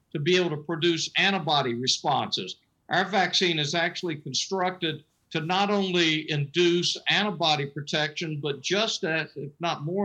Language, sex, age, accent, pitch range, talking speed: English, male, 50-69, American, 145-175 Hz, 145 wpm